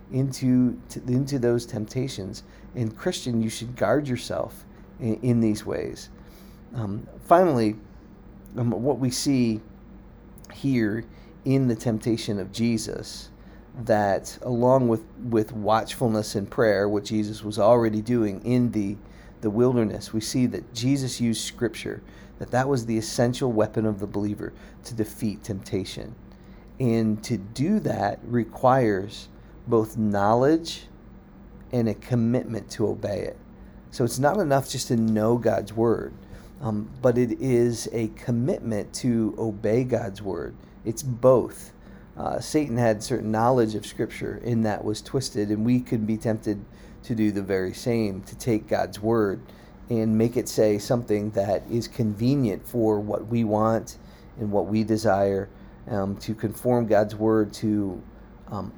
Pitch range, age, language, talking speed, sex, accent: 105-120 Hz, 40-59, English, 145 wpm, male, American